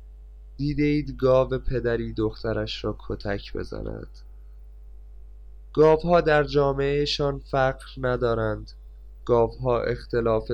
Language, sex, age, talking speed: Persian, male, 20-39, 80 wpm